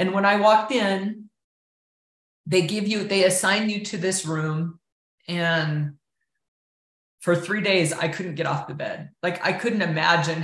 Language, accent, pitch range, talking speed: English, American, 165-200 Hz, 160 wpm